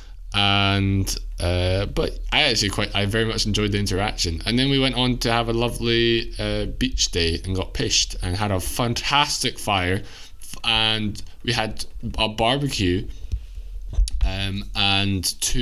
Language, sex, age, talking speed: English, male, 20-39, 155 wpm